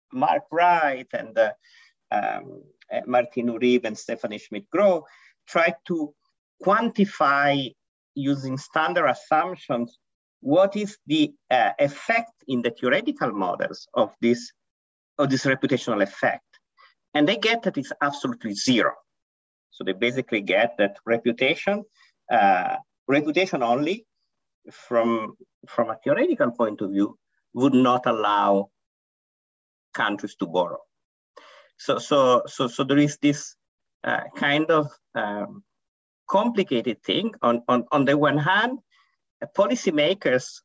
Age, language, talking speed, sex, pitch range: 50-69, English, 120 wpm, male, 120-200 Hz